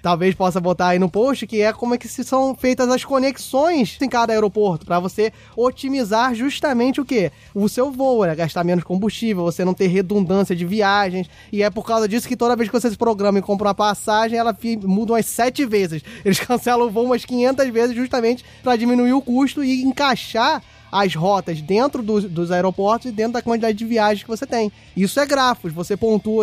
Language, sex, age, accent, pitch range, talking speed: Portuguese, male, 20-39, Brazilian, 190-245 Hz, 210 wpm